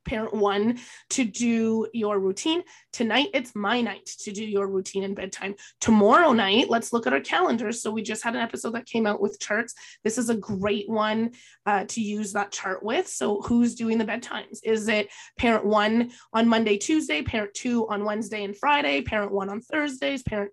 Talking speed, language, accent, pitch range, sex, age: 200 wpm, English, American, 205-245 Hz, female, 20-39